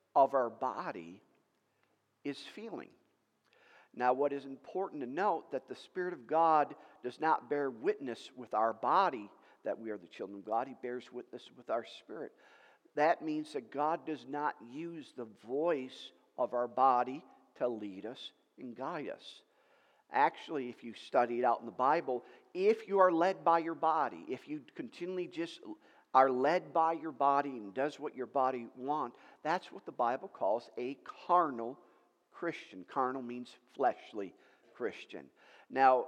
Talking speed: 165 wpm